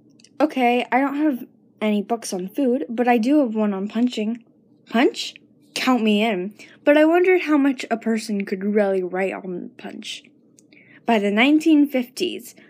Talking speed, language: 160 wpm, English